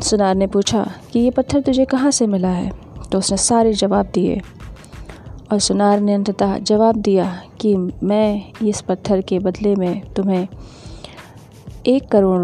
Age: 30-49